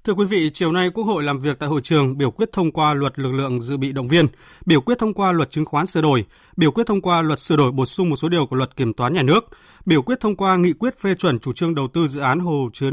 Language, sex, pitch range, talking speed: Vietnamese, male, 140-180 Hz, 305 wpm